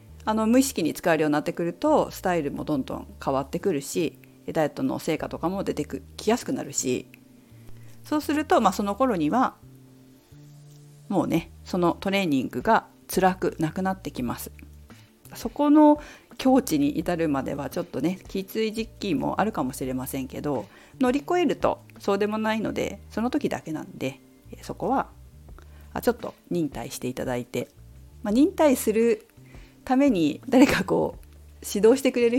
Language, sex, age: Japanese, female, 50-69